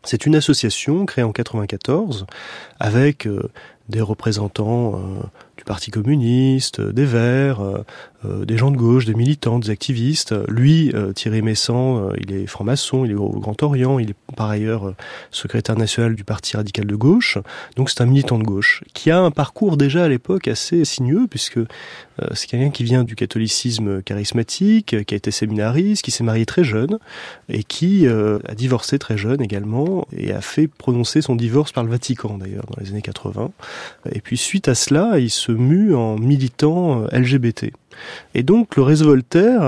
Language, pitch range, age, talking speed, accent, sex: French, 110-140 Hz, 30-49, 185 wpm, French, male